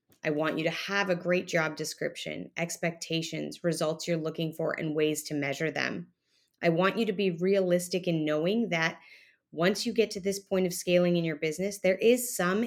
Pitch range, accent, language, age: 165-195 Hz, American, English, 20-39